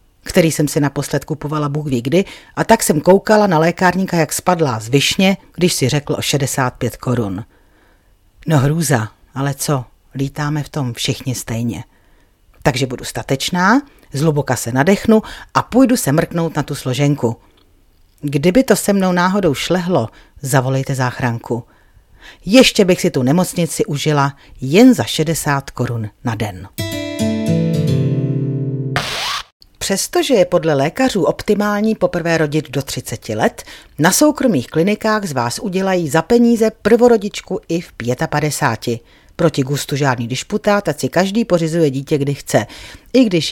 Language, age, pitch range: Czech, 40-59, 130-180 Hz